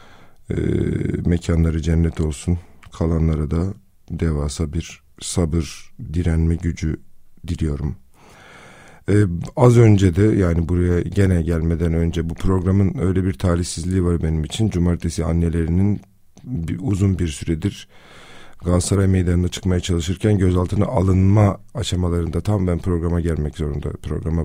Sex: male